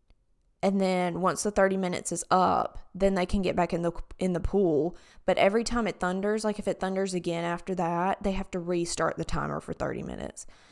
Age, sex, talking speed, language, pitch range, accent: 20-39, female, 220 wpm, English, 170-215 Hz, American